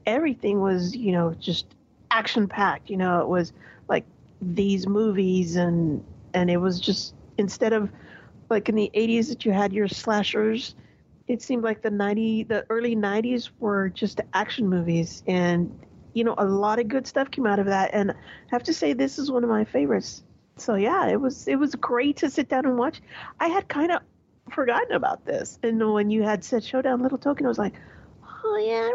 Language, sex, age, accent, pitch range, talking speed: English, female, 40-59, American, 200-265 Hz, 200 wpm